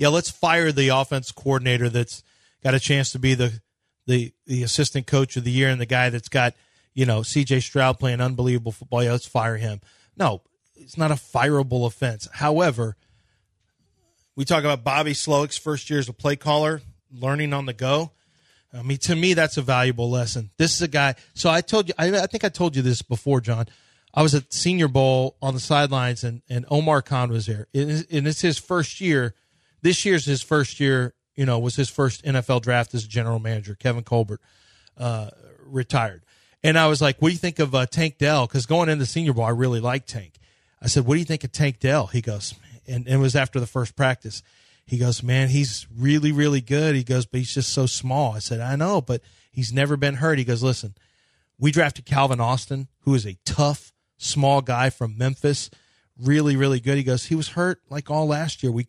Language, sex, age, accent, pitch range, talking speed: English, male, 30-49, American, 120-145 Hz, 215 wpm